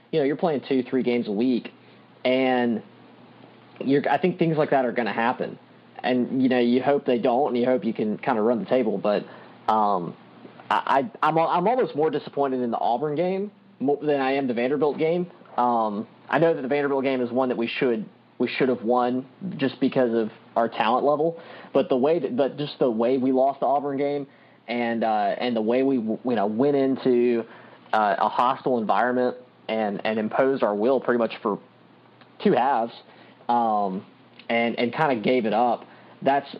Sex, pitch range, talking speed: male, 120-140 Hz, 200 wpm